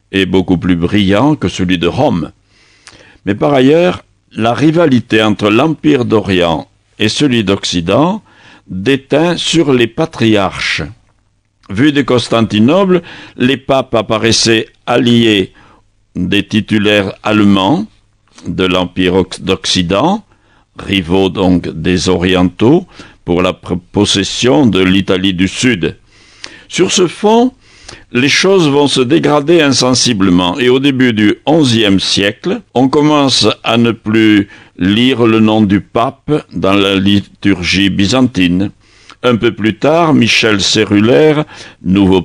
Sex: male